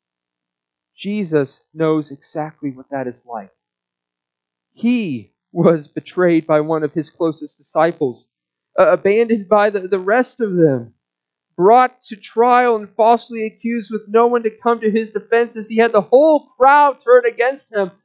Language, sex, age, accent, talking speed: English, male, 40-59, American, 155 wpm